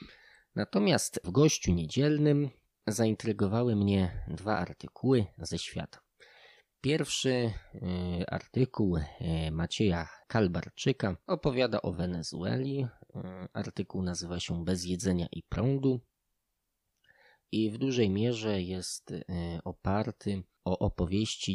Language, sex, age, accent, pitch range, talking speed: Polish, male, 20-39, native, 90-115 Hz, 90 wpm